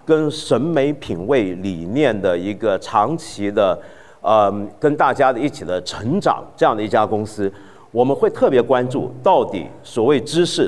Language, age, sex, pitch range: Chinese, 50-69, male, 115-185 Hz